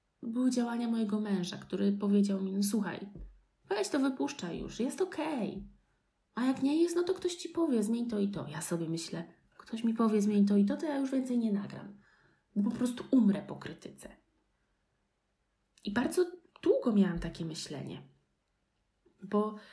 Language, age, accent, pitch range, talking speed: Polish, 20-39, native, 195-255 Hz, 175 wpm